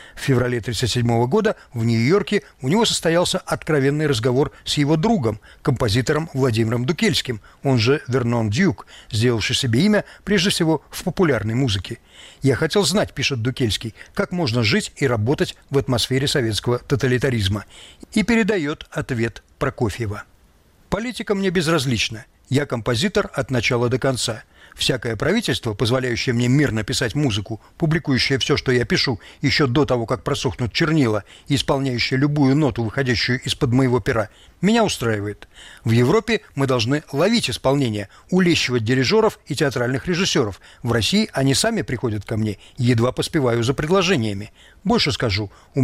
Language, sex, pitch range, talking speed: Russian, male, 120-155 Hz, 140 wpm